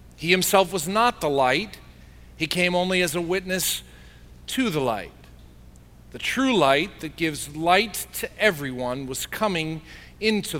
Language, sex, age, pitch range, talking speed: English, male, 40-59, 135-205 Hz, 145 wpm